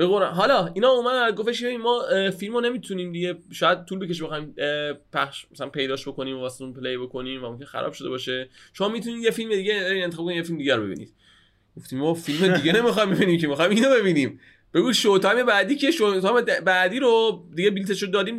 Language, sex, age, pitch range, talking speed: Persian, male, 20-39, 140-215 Hz, 195 wpm